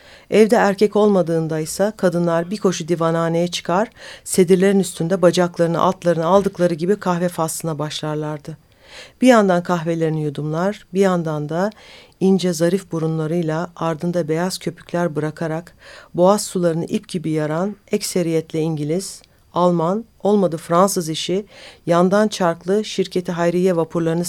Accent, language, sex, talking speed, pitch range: native, Turkish, female, 120 wpm, 165-190 Hz